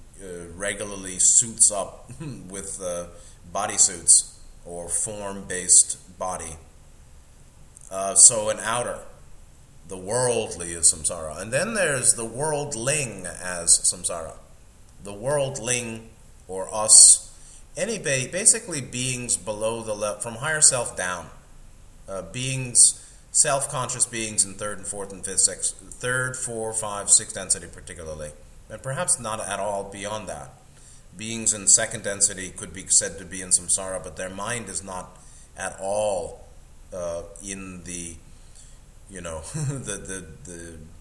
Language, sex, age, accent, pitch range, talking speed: English, male, 30-49, American, 85-110 Hz, 135 wpm